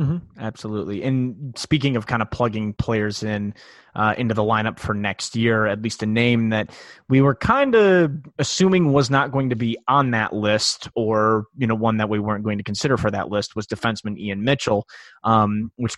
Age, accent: 20-39, American